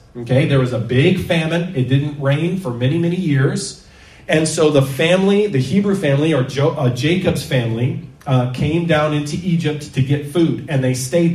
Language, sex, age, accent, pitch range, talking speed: English, male, 40-59, American, 135-170 Hz, 180 wpm